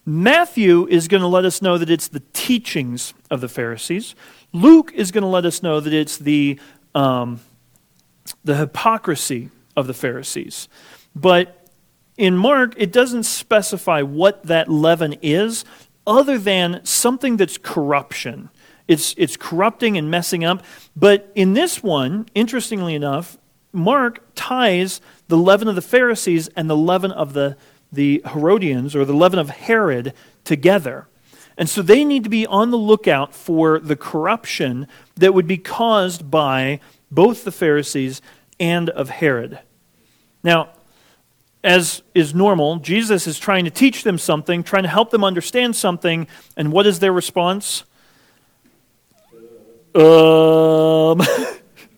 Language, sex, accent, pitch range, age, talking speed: English, male, American, 150-205 Hz, 40-59, 140 wpm